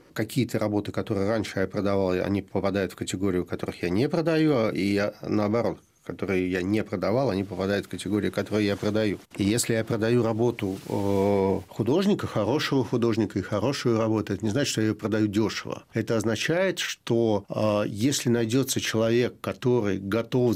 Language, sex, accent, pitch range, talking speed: Russian, male, native, 100-120 Hz, 165 wpm